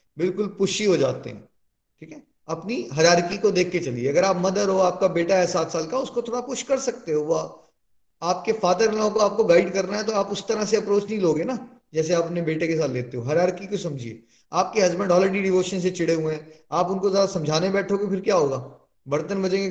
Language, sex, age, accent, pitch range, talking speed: Hindi, male, 30-49, native, 155-205 Hz, 225 wpm